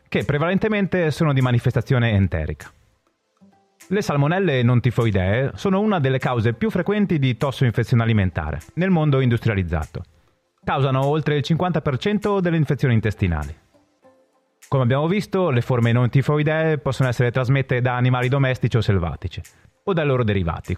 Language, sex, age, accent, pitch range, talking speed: Italian, male, 30-49, native, 105-160 Hz, 140 wpm